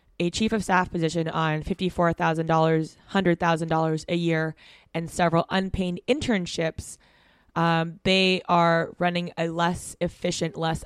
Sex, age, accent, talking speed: female, 20-39, American, 145 wpm